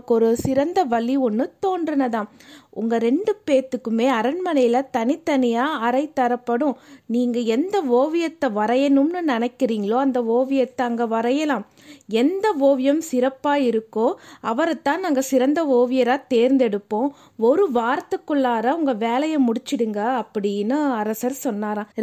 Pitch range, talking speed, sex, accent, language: 230-285 Hz, 40 wpm, female, native, Tamil